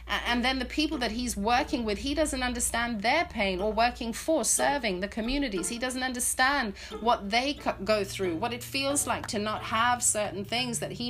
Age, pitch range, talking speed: 40-59, 190-265 Hz, 200 wpm